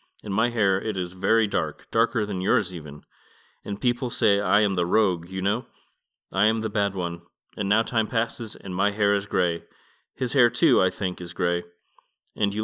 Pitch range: 95-115 Hz